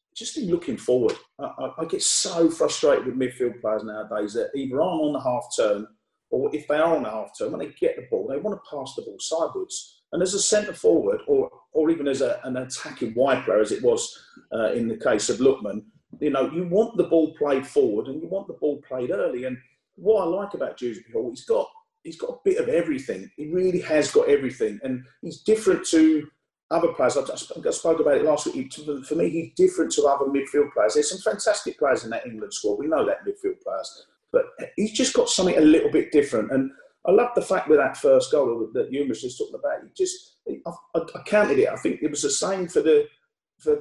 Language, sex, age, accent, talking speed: English, male, 40-59, British, 230 wpm